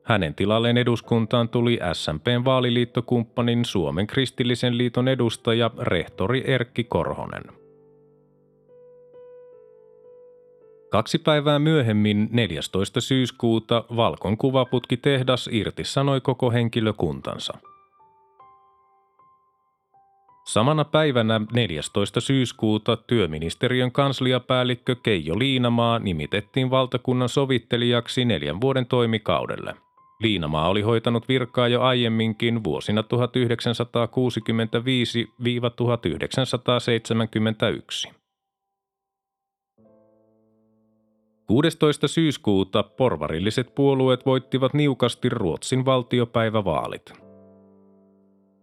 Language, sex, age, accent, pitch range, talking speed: Finnish, male, 30-49, native, 110-135 Hz, 65 wpm